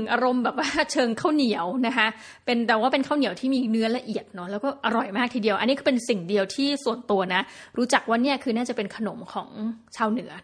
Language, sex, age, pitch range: Thai, female, 20-39, 210-270 Hz